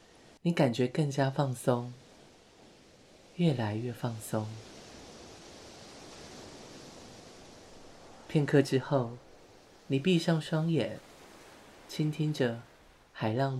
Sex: male